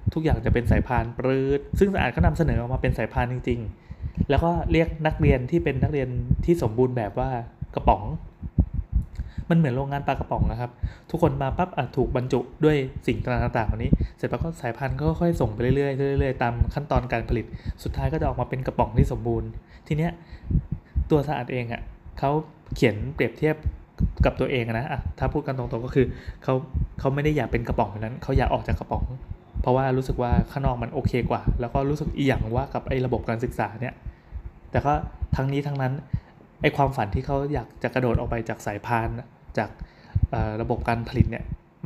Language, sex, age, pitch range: Thai, male, 20-39, 120-140 Hz